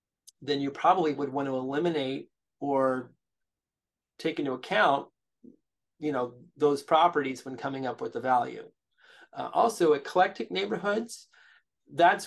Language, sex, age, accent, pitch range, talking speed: English, male, 30-49, American, 130-155 Hz, 125 wpm